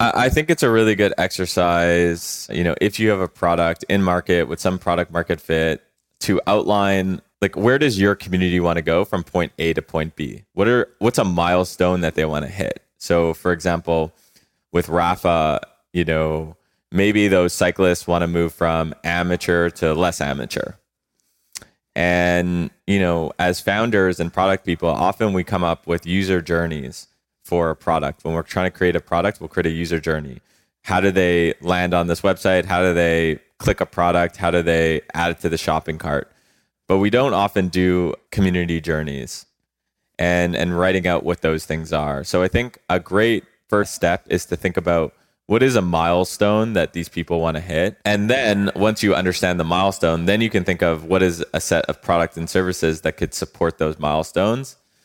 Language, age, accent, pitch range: English, 20-39, American, 85-95 Hz